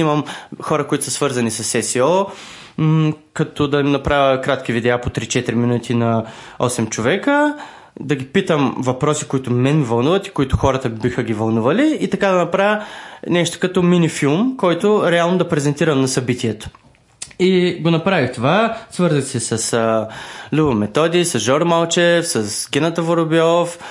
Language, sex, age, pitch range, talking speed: Bulgarian, male, 20-39, 120-160 Hz, 150 wpm